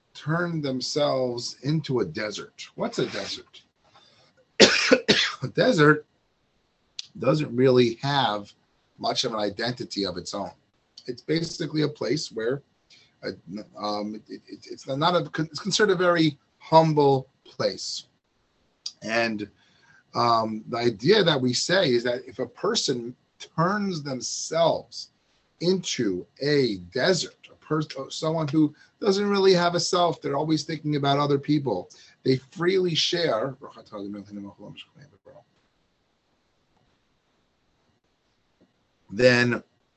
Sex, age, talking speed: male, 30-49, 105 wpm